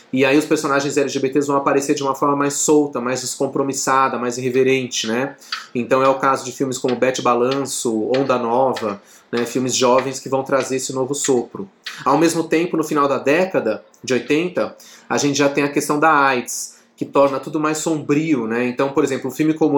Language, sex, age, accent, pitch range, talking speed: Portuguese, male, 30-49, Brazilian, 130-155 Hz, 200 wpm